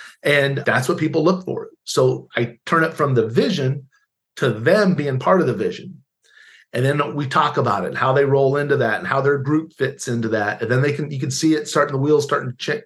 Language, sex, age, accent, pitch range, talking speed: English, male, 40-59, American, 130-160 Hz, 245 wpm